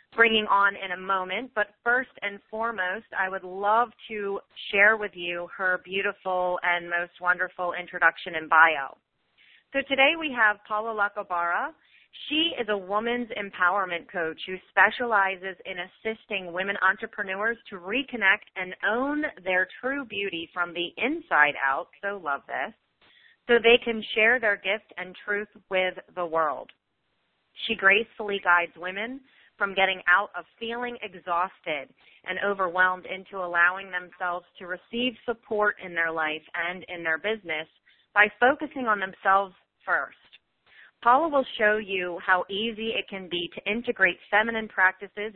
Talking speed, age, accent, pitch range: 145 wpm, 30-49, American, 175-215 Hz